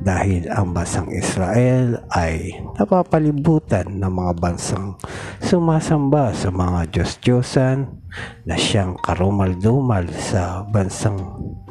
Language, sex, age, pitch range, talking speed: Filipino, male, 50-69, 90-120 Hz, 95 wpm